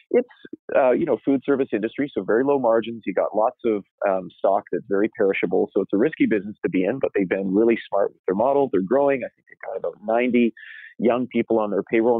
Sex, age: male, 40-59